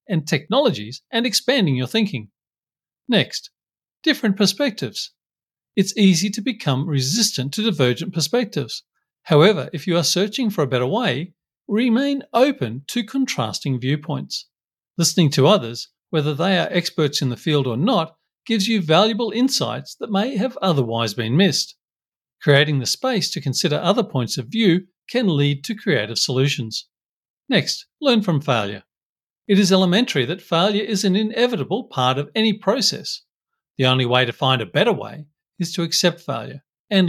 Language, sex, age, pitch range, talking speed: English, male, 50-69, 140-210 Hz, 155 wpm